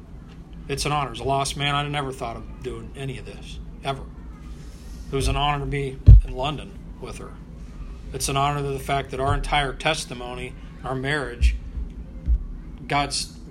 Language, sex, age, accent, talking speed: English, male, 40-59, American, 175 wpm